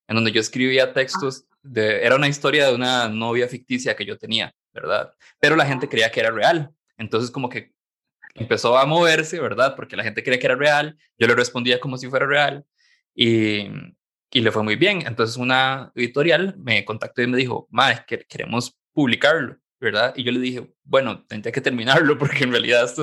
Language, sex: Spanish, male